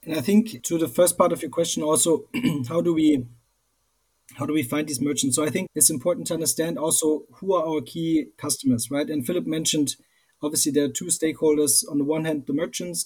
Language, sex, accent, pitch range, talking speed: English, male, German, 135-165 Hz, 220 wpm